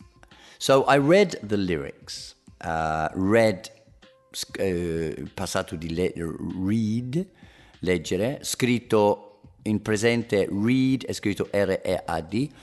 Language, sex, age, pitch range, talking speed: English, male, 50-69, 90-125 Hz, 85 wpm